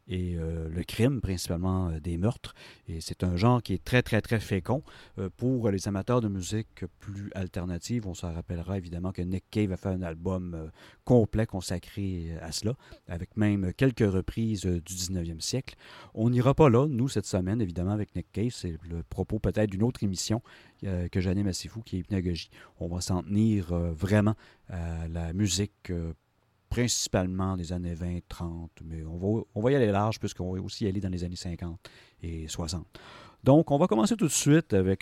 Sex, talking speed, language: male, 200 wpm, French